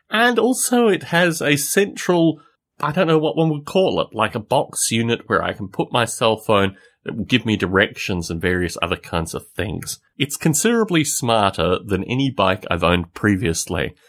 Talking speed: 190 wpm